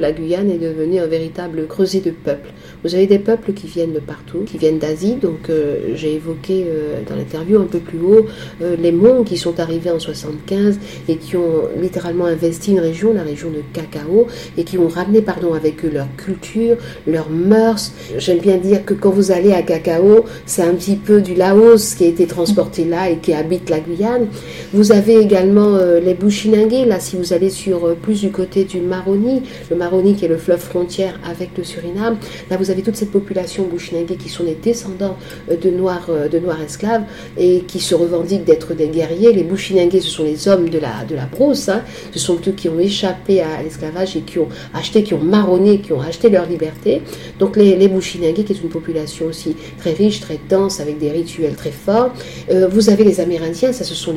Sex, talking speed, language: female, 215 wpm, French